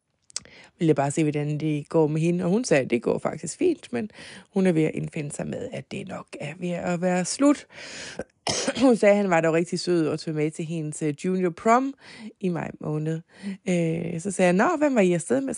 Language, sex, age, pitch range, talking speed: Danish, female, 20-39, 155-195 Hz, 235 wpm